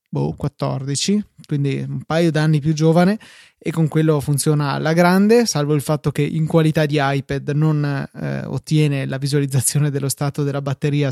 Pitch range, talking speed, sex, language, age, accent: 140-160 Hz, 160 wpm, male, Italian, 20-39, native